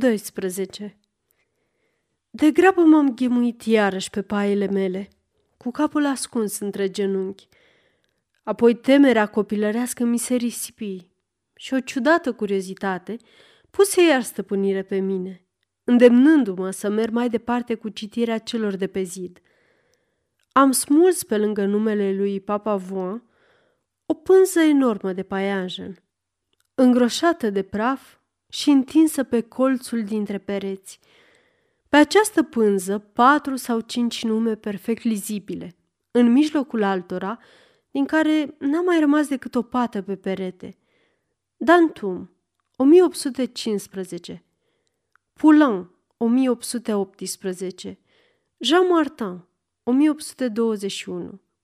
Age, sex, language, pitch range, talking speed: 30-49, female, Romanian, 200-285 Hz, 105 wpm